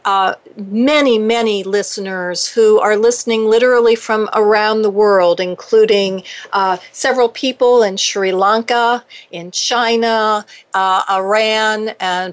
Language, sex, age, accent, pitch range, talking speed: English, female, 50-69, American, 185-225 Hz, 115 wpm